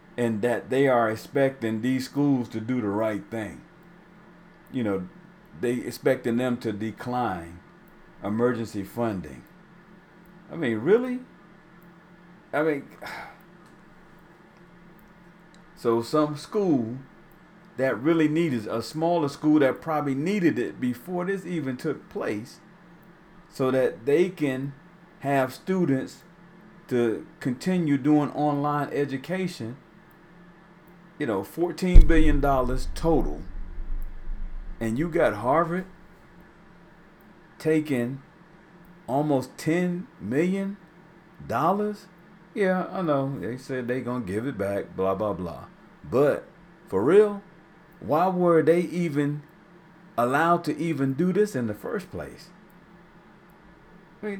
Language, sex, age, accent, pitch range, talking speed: English, male, 50-69, American, 130-180 Hz, 110 wpm